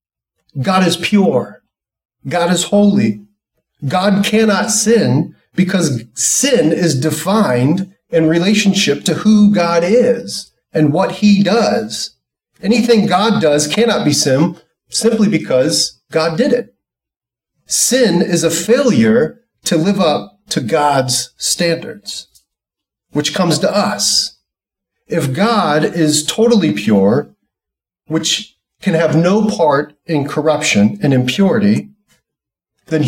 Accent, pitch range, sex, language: American, 145-205 Hz, male, English